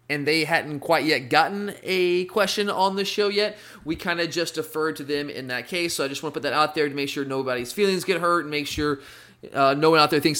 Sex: male